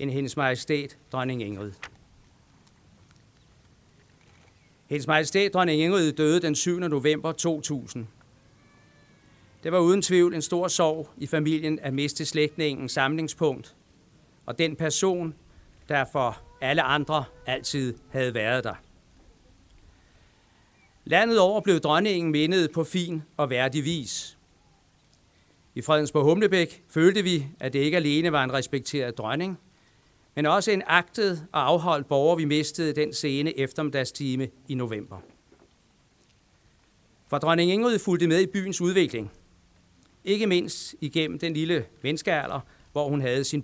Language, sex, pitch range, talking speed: Danish, male, 125-170 Hz, 130 wpm